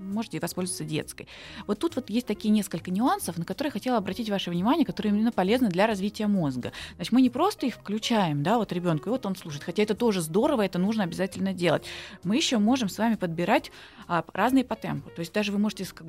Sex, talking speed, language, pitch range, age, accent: female, 225 wpm, Russian, 170-225 Hz, 20-39, native